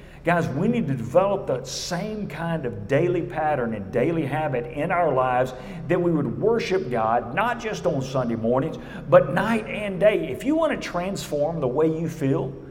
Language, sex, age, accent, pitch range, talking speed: English, male, 50-69, American, 135-210 Hz, 190 wpm